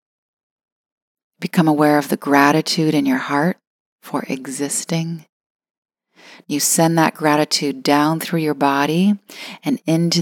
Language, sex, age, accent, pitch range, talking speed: English, female, 30-49, American, 150-170 Hz, 115 wpm